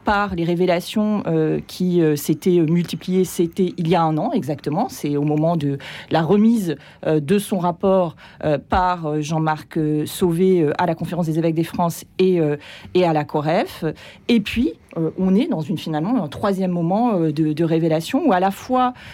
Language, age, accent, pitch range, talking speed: French, 40-59, French, 160-205 Hz, 200 wpm